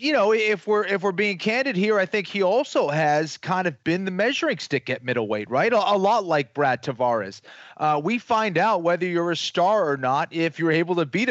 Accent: American